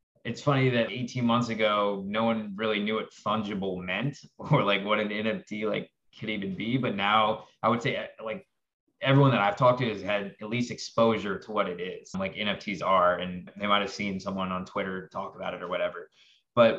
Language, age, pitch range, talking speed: English, 20-39, 95-110 Hz, 205 wpm